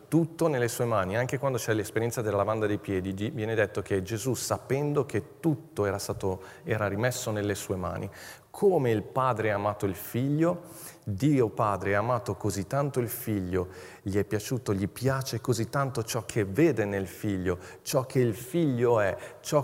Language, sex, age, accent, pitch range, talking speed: Italian, male, 40-59, native, 105-130 Hz, 175 wpm